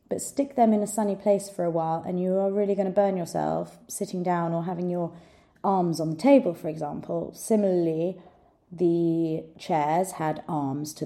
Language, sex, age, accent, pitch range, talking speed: English, female, 30-49, British, 155-200 Hz, 190 wpm